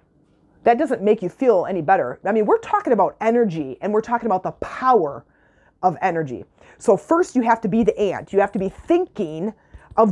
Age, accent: 30-49, American